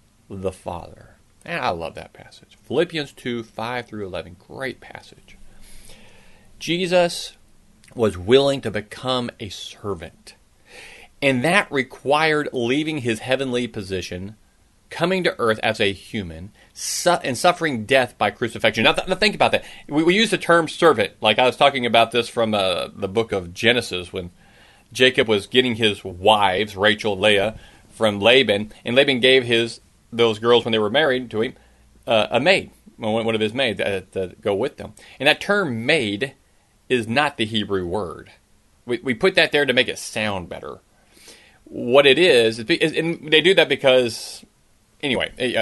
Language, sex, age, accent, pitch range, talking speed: English, male, 40-59, American, 105-135 Hz, 165 wpm